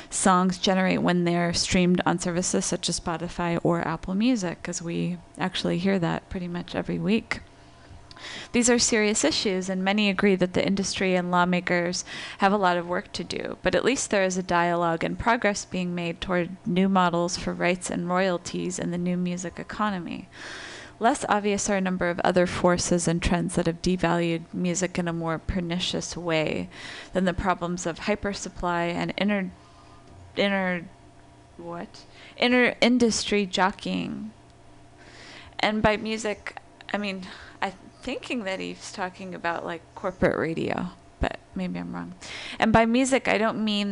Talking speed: 165 wpm